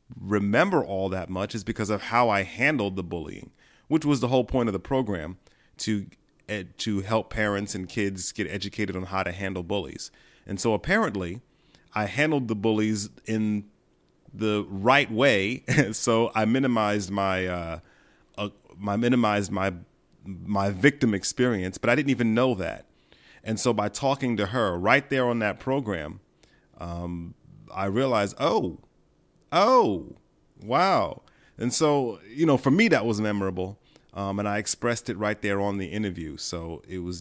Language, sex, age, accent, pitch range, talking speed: English, male, 30-49, American, 95-120 Hz, 165 wpm